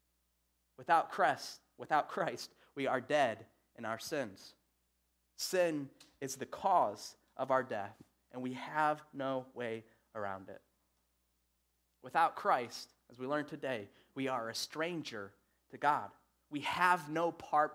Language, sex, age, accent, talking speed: English, male, 20-39, American, 130 wpm